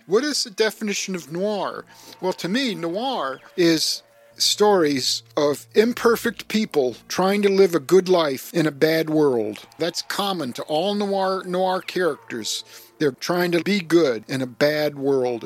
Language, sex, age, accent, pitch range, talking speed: English, male, 50-69, American, 145-195 Hz, 160 wpm